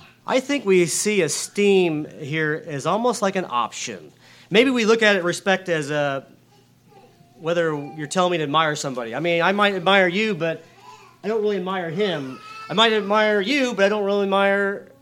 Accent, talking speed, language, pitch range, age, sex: American, 190 wpm, English, 135-195 Hz, 40-59, male